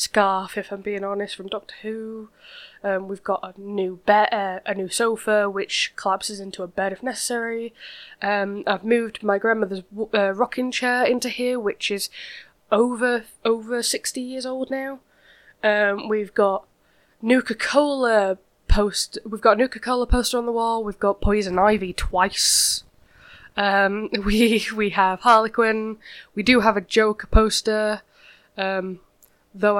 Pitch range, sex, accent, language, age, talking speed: 200-240 Hz, female, British, English, 10-29, 155 wpm